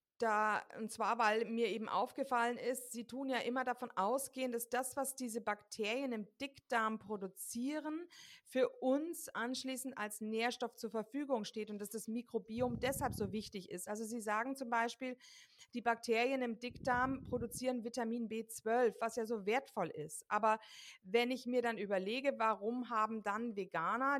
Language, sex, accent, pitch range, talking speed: German, female, German, 210-255 Hz, 160 wpm